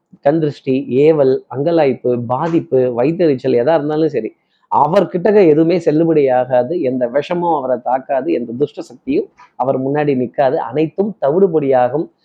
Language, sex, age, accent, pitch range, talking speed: Tamil, male, 30-49, native, 135-190 Hz, 115 wpm